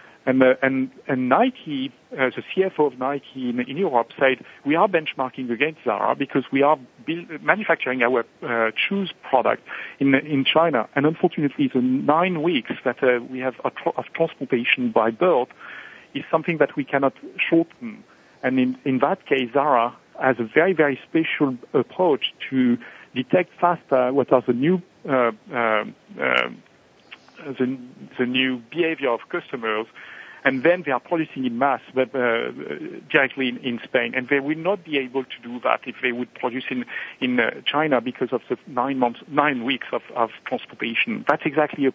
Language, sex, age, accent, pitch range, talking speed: English, male, 50-69, French, 125-165 Hz, 175 wpm